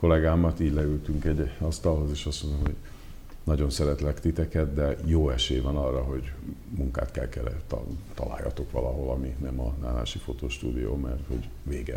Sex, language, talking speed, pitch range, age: male, Hungarian, 155 wpm, 70-85 Hz, 50-69